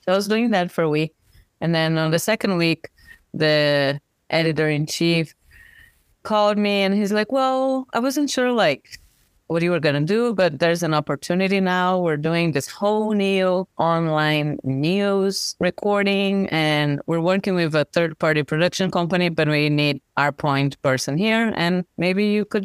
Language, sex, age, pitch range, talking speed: English, female, 30-49, 150-185 Hz, 170 wpm